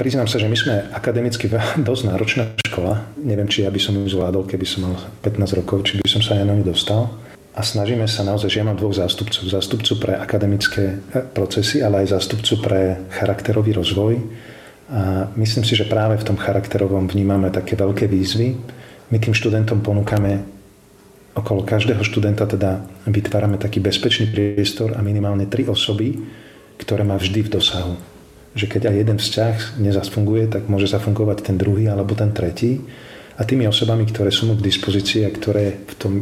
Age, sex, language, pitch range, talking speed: 40-59, male, Slovak, 100-110 Hz, 180 wpm